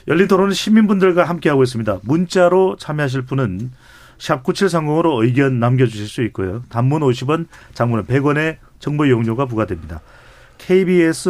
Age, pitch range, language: 40-59, 115-160 Hz, Korean